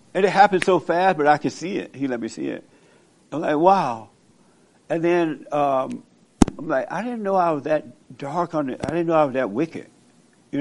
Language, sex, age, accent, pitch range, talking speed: English, male, 60-79, American, 140-170 Hz, 225 wpm